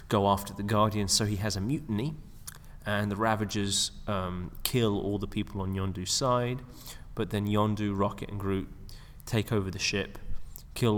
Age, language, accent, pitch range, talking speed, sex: 20-39, English, British, 95-110 Hz, 170 wpm, male